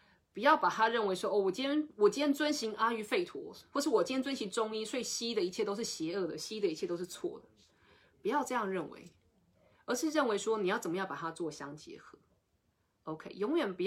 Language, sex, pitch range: Chinese, female, 175-235 Hz